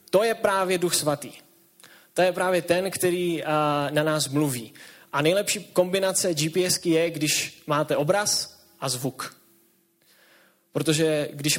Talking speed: 130 wpm